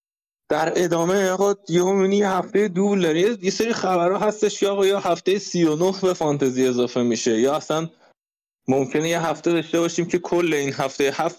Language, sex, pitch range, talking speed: Persian, male, 125-180 Hz, 165 wpm